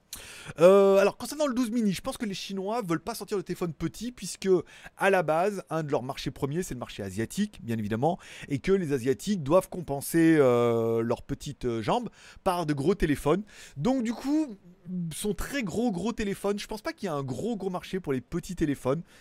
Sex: male